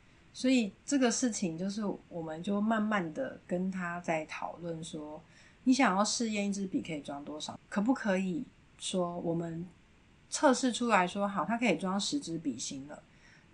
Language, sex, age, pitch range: Chinese, female, 30-49, 170-230 Hz